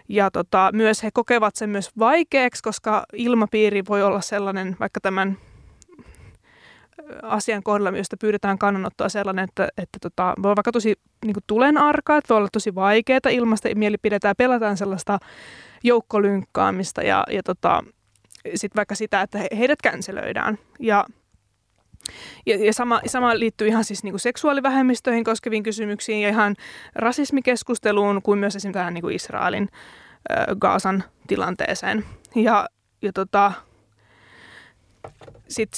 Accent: native